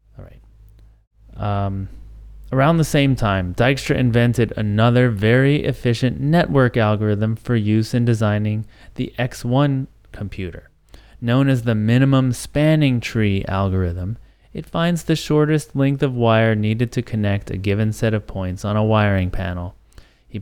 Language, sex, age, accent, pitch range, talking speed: English, male, 30-49, American, 95-125 Hz, 135 wpm